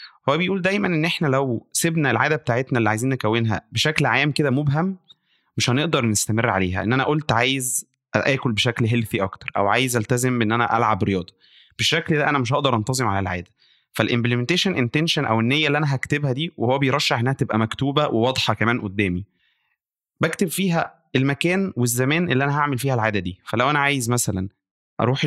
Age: 20-39